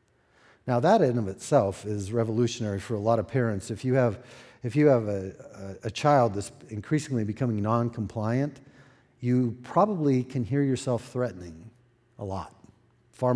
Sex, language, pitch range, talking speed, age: male, English, 110-130 Hz, 160 wpm, 50-69